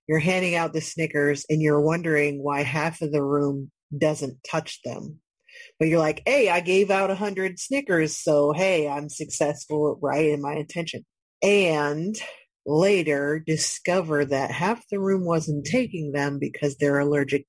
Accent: American